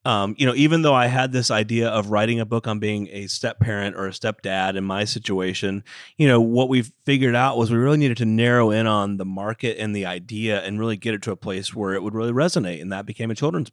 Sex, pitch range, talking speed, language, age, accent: male, 110-150 Hz, 260 wpm, English, 30-49, American